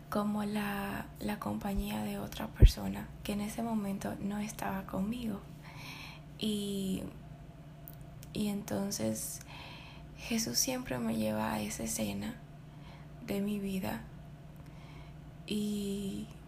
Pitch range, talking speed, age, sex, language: 145-210 Hz, 100 wpm, 10-29, female, Spanish